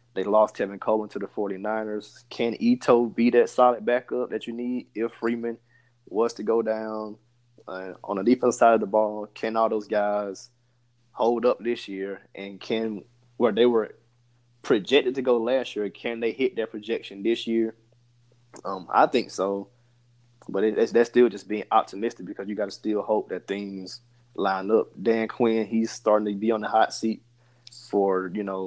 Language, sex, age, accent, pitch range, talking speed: English, male, 20-39, American, 105-120 Hz, 190 wpm